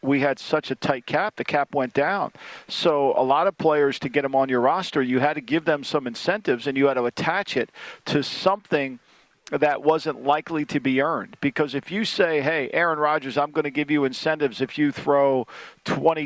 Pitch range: 140-165 Hz